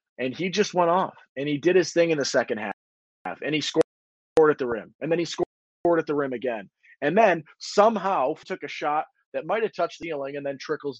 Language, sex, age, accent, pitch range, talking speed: English, male, 30-49, American, 135-185 Hz, 230 wpm